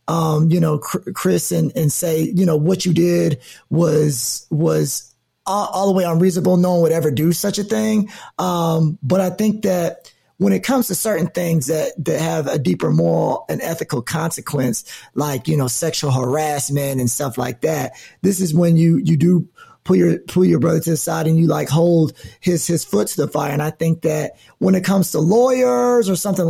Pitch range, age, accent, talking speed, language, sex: 155-185 Hz, 30-49, American, 205 wpm, English, male